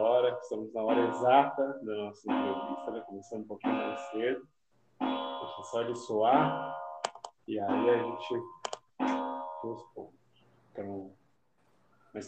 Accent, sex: Brazilian, male